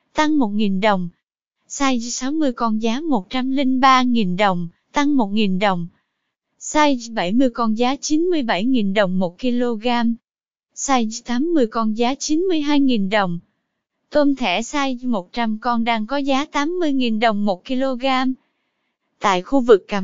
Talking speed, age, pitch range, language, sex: 125 wpm, 20-39, 230-280 Hz, Vietnamese, female